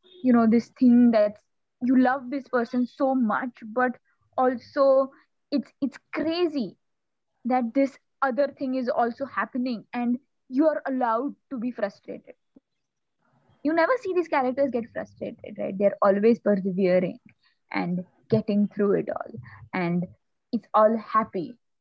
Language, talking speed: English, 140 wpm